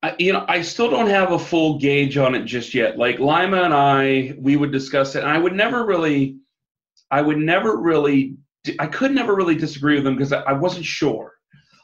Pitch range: 135-165 Hz